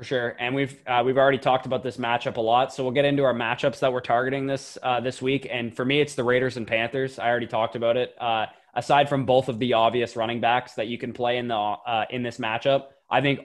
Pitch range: 115-130 Hz